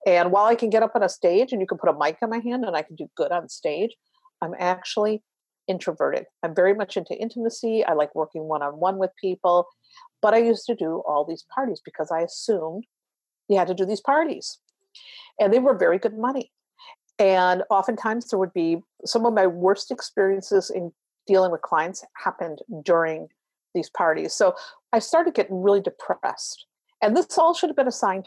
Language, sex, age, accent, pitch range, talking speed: English, female, 50-69, American, 180-245 Hz, 195 wpm